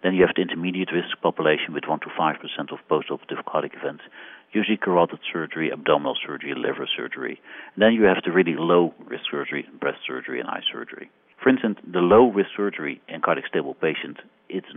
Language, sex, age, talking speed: English, male, 60-79, 175 wpm